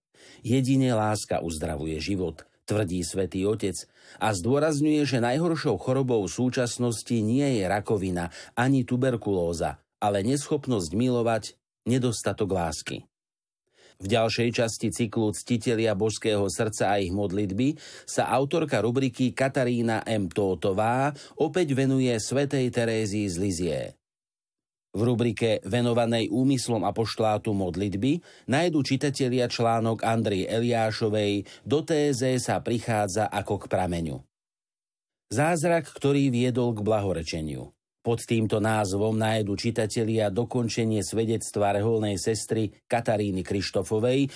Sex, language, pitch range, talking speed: male, Slovak, 105-125 Hz, 110 wpm